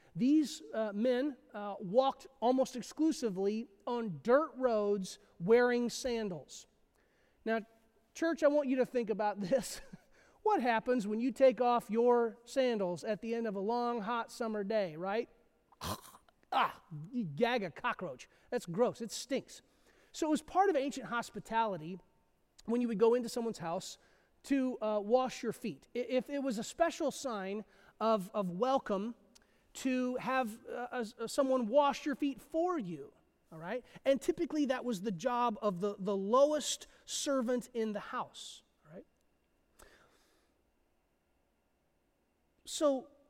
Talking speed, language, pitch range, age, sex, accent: 145 wpm, English, 205-265 Hz, 30-49, male, American